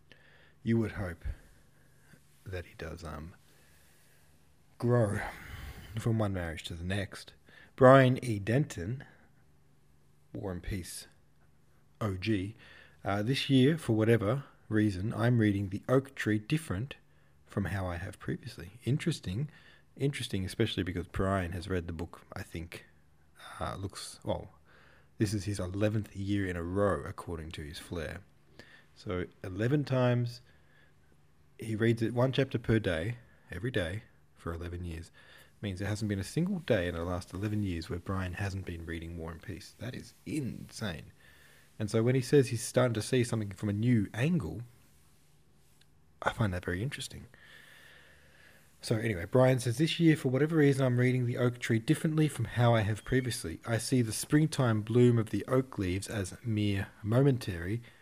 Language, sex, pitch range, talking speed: English, male, 90-125 Hz, 160 wpm